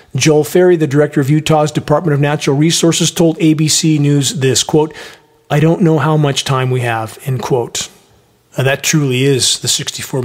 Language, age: English, 40-59